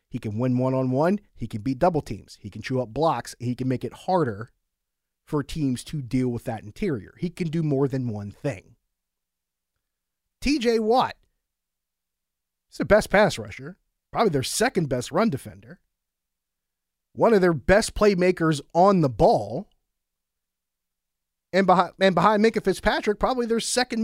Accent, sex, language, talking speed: American, male, English, 155 wpm